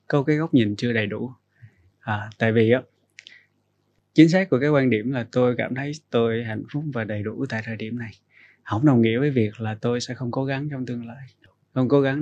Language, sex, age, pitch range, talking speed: Vietnamese, male, 20-39, 115-135 Hz, 225 wpm